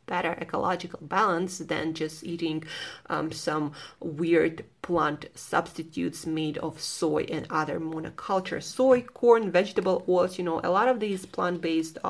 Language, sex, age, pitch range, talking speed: English, female, 30-49, 165-195 Hz, 145 wpm